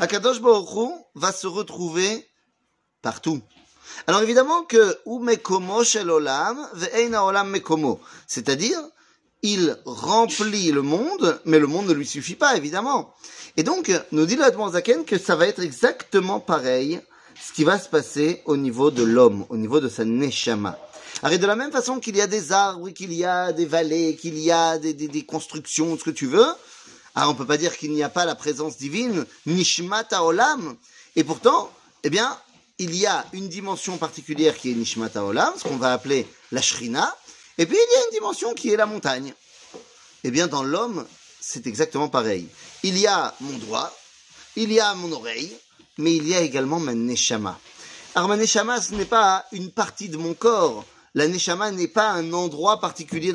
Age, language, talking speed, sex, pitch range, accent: 30-49, French, 190 wpm, male, 155-210 Hz, French